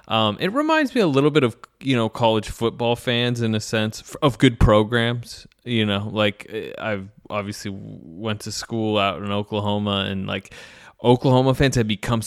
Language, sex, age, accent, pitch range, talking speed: English, male, 20-39, American, 105-130 Hz, 175 wpm